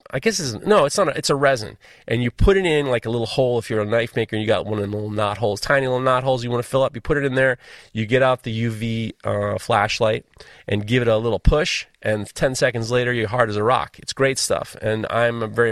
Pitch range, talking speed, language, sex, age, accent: 115-155 Hz, 285 wpm, English, male, 30-49, American